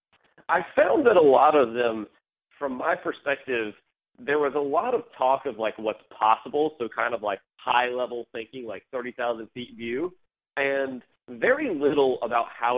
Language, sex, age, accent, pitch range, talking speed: English, male, 40-59, American, 115-150 Hz, 165 wpm